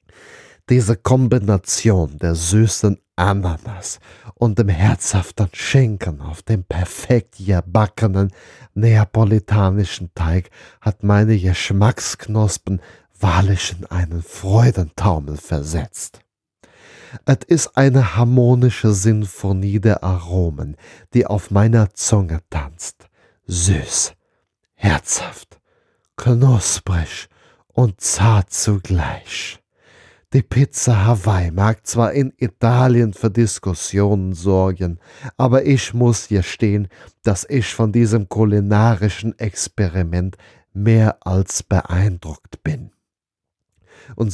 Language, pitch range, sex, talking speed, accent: German, 95-115 Hz, male, 90 wpm, German